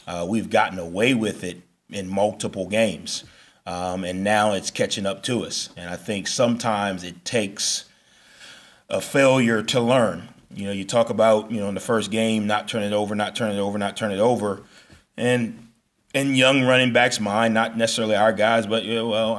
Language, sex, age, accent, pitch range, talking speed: English, male, 20-39, American, 100-120 Hz, 200 wpm